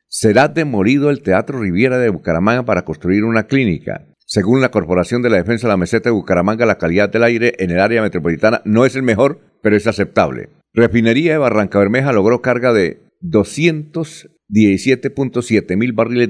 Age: 50-69